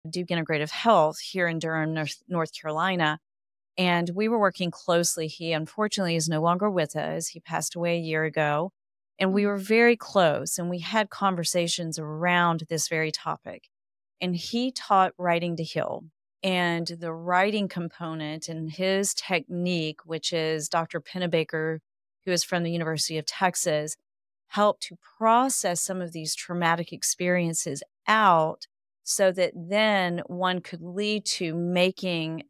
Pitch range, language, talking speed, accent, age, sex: 160-185 Hz, English, 150 wpm, American, 30-49, female